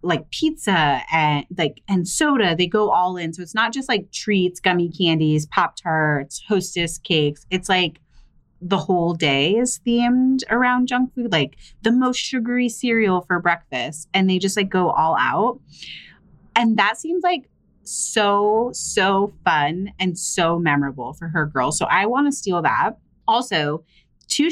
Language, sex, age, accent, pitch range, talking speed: English, female, 30-49, American, 160-220 Hz, 165 wpm